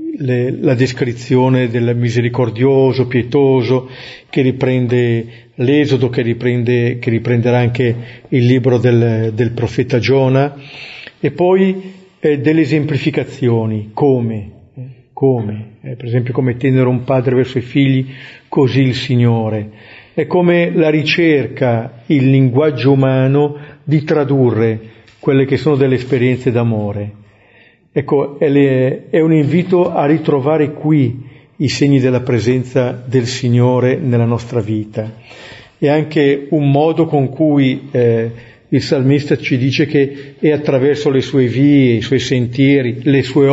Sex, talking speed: male, 130 wpm